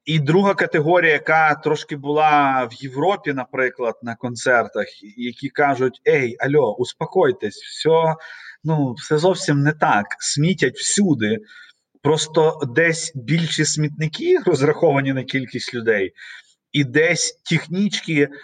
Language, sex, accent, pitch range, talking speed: Ukrainian, male, native, 125-155 Hz, 115 wpm